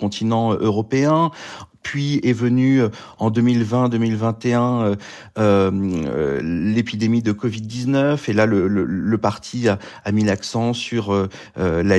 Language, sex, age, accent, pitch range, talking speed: French, male, 40-59, French, 105-130 Hz, 125 wpm